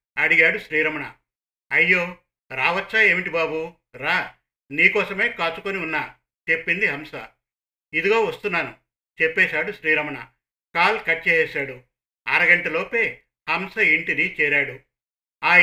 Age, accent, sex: 50-69, native, male